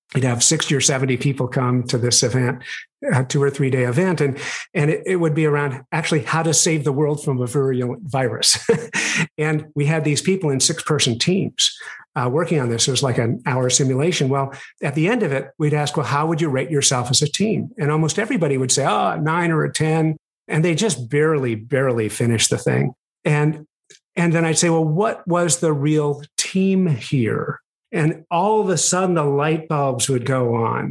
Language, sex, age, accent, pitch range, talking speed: English, male, 50-69, American, 130-165 Hz, 215 wpm